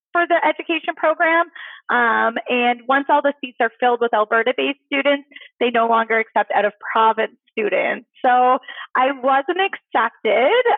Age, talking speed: 20-39, 155 wpm